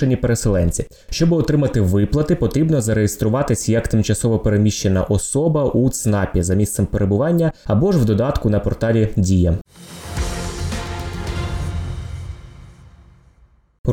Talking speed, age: 105 wpm, 20-39